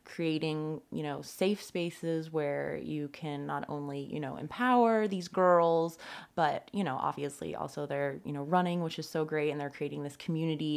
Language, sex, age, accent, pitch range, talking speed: English, female, 20-39, American, 145-170 Hz, 185 wpm